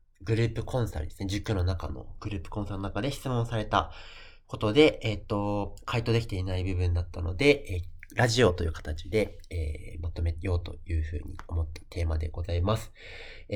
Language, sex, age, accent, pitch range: Japanese, male, 30-49, native, 85-115 Hz